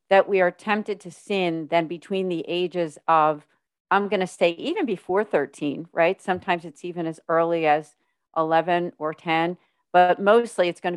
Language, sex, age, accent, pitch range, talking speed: English, female, 40-59, American, 165-195 Hz, 175 wpm